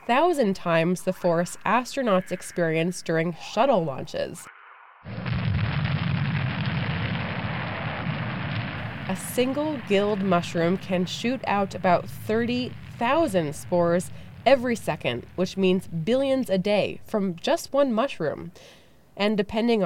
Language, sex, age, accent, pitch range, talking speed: English, female, 20-39, American, 175-235 Hz, 95 wpm